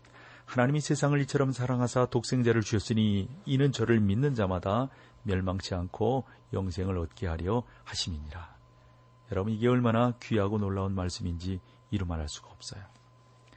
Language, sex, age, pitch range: Korean, male, 40-59, 95-125 Hz